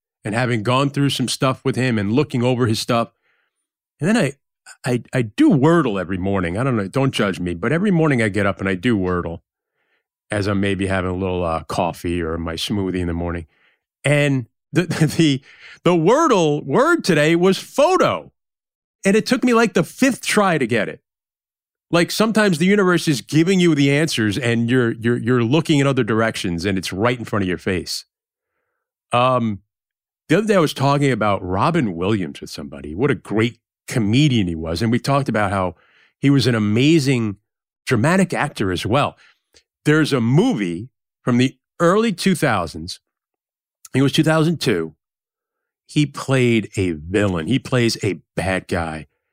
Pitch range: 95-150 Hz